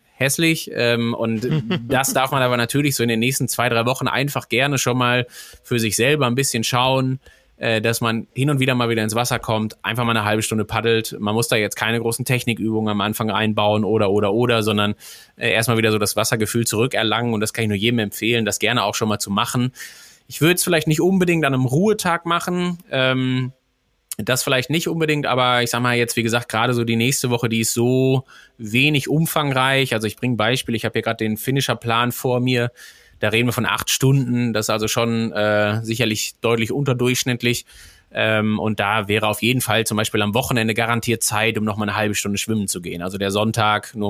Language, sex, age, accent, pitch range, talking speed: German, male, 20-39, German, 110-125 Hz, 220 wpm